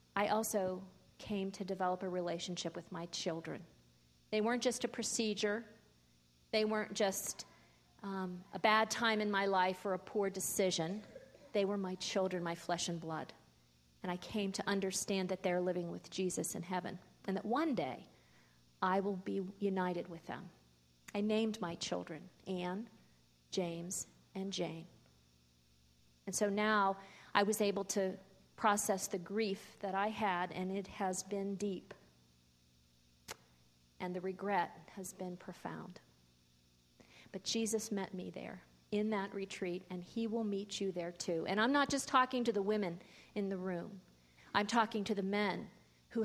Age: 40-59